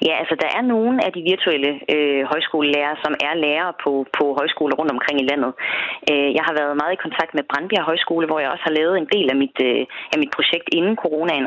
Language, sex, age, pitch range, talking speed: Danish, female, 30-49, 145-190 Hz, 235 wpm